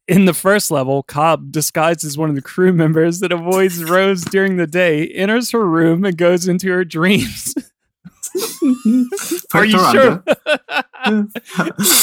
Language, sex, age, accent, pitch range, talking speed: English, male, 20-39, American, 145-190 Hz, 150 wpm